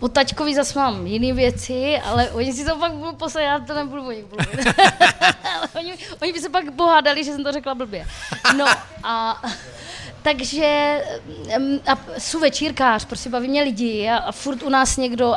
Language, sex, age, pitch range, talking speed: Czech, female, 20-39, 230-290 Hz, 170 wpm